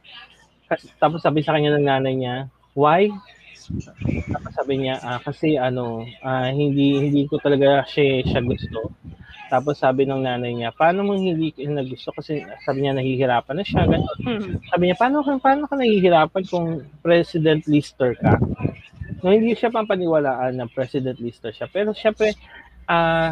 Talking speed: 160 wpm